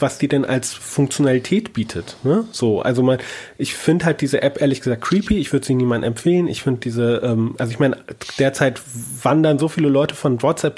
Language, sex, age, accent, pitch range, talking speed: German, male, 30-49, German, 125-155 Hz, 205 wpm